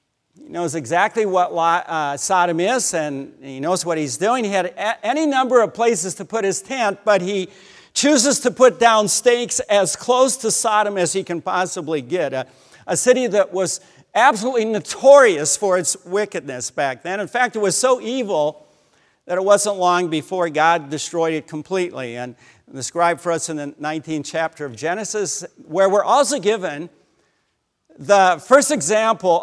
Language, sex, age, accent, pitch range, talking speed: English, male, 50-69, American, 160-225 Hz, 165 wpm